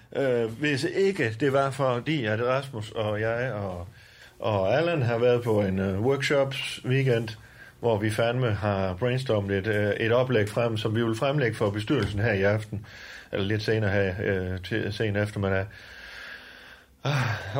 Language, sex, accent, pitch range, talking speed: Danish, male, native, 105-125 Hz, 165 wpm